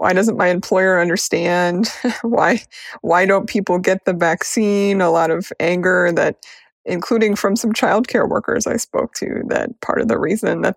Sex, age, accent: female, 30-49, American